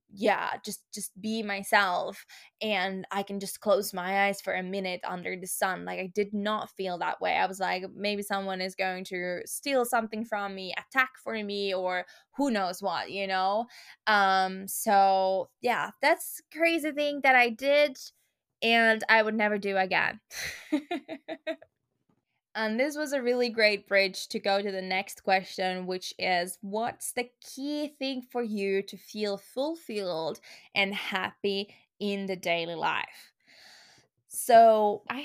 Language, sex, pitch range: English, female, 190-235 Hz